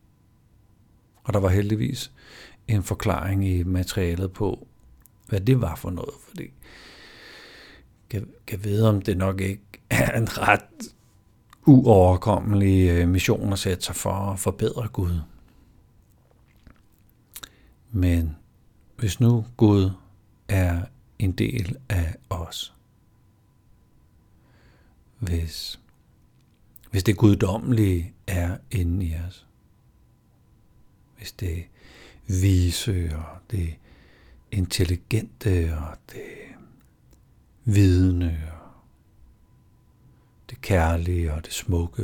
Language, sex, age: Danish, male, 60-79